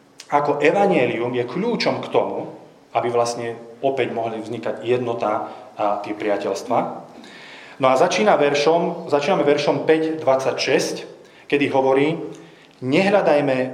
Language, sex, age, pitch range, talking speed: Slovak, male, 30-49, 115-145 Hz, 110 wpm